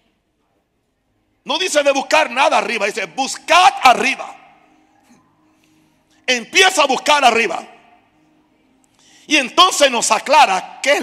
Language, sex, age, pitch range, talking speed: Spanish, male, 60-79, 225-315 Hz, 105 wpm